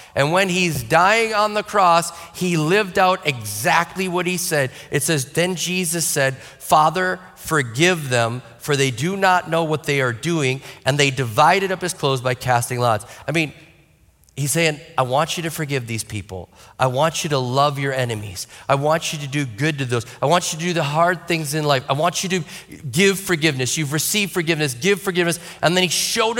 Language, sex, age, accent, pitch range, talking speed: English, male, 40-59, American, 135-180 Hz, 205 wpm